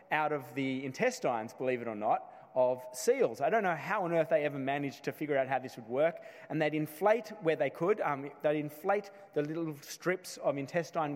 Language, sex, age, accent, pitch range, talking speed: English, male, 30-49, Australian, 140-205 Hz, 230 wpm